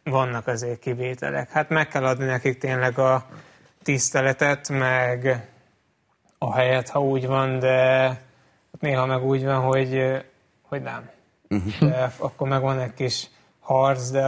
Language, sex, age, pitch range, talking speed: Hungarian, male, 20-39, 130-135 Hz, 135 wpm